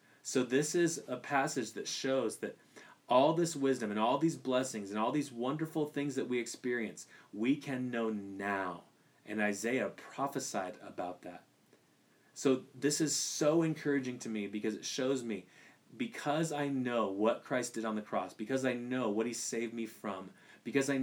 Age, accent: 30-49, American